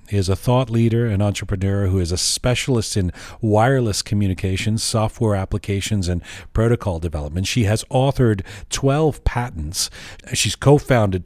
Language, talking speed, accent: English, 135 wpm, American